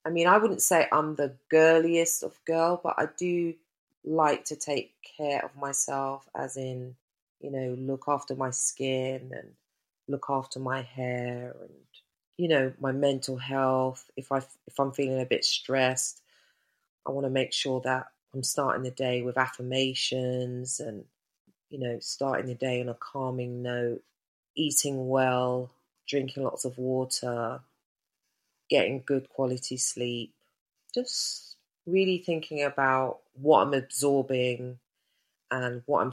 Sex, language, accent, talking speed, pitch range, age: female, English, British, 145 wpm, 125-135 Hz, 30-49